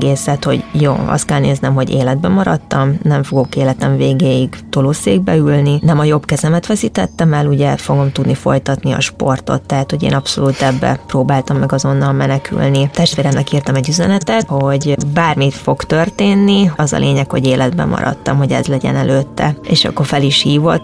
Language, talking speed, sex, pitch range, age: Hungarian, 170 wpm, female, 135-160 Hz, 20-39